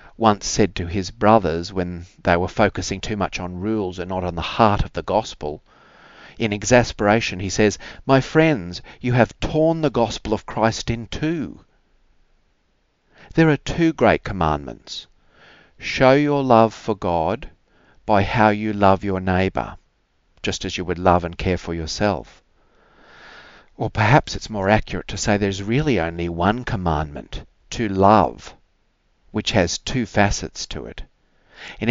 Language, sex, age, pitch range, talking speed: English, male, 50-69, 90-115 Hz, 155 wpm